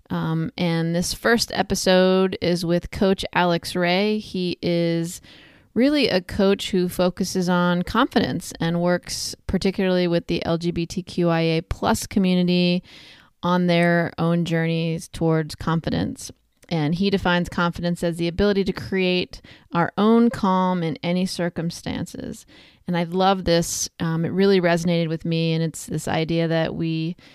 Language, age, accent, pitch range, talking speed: English, 30-49, American, 170-185 Hz, 140 wpm